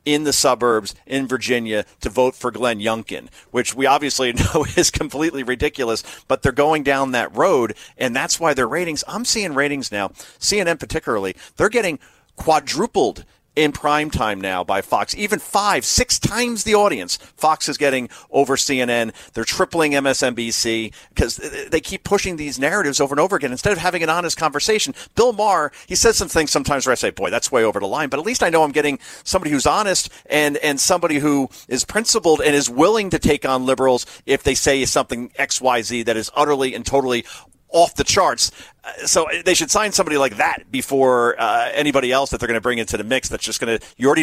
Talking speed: 205 wpm